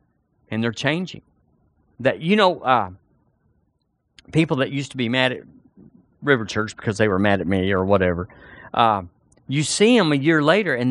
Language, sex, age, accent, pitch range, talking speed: English, male, 50-69, American, 130-180 Hz, 175 wpm